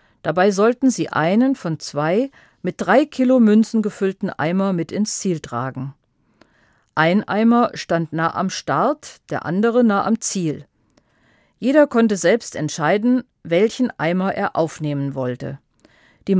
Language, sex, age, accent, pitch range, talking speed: German, female, 50-69, German, 155-225 Hz, 135 wpm